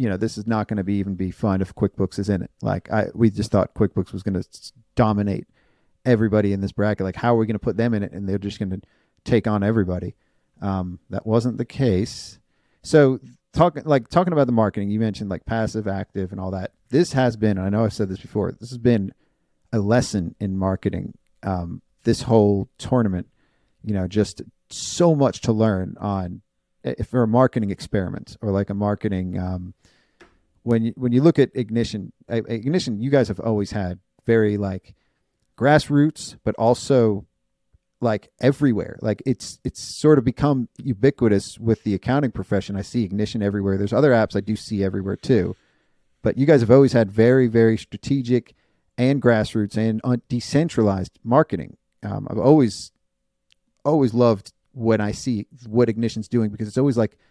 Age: 40-59